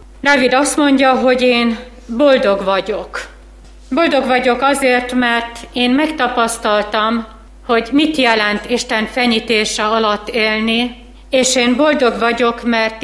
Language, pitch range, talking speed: Hungarian, 190-250 Hz, 115 wpm